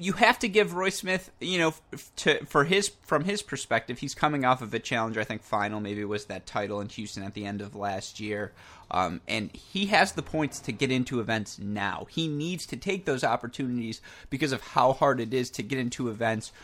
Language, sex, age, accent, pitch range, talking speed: English, male, 30-49, American, 105-120 Hz, 225 wpm